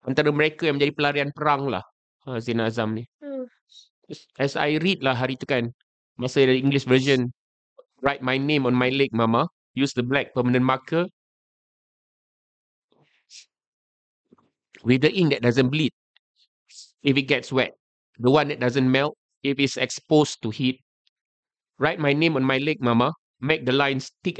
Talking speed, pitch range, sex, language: 160 wpm, 130-150 Hz, male, Malay